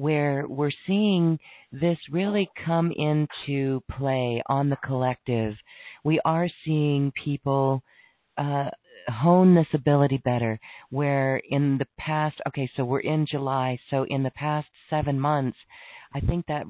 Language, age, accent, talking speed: English, 40-59, American, 135 wpm